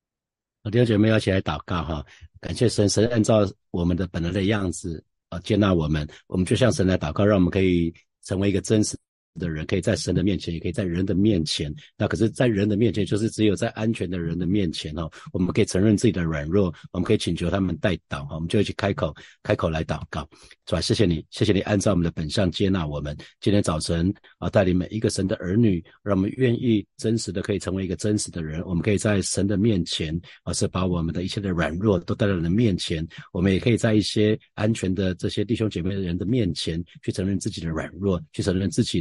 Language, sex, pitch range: Chinese, male, 85-105 Hz